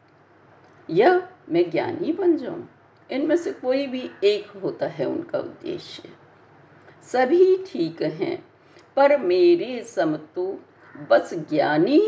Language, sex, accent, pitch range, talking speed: Hindi, female, native, 250-350 Hz, 110 wpm